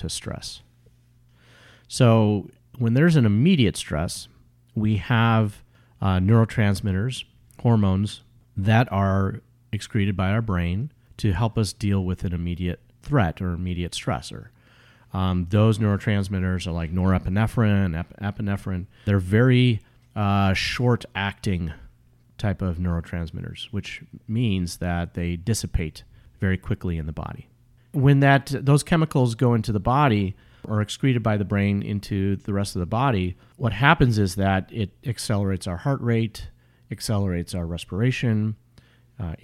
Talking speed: 130 wpm